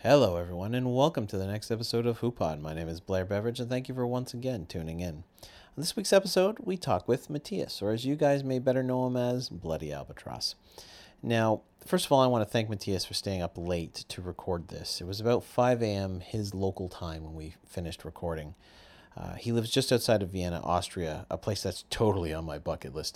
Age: 40-59